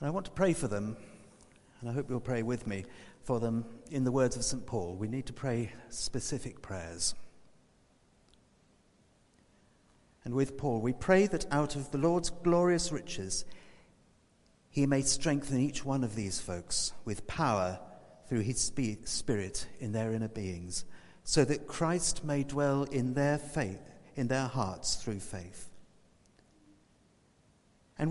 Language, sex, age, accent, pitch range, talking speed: English, male, 50-69, British, 100-140 Hz, 145 wpm